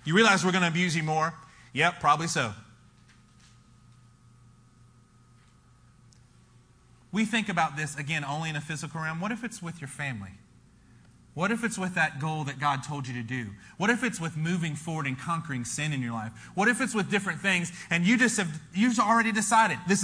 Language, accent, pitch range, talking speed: English, American, 125-200 Hz, 185 wpm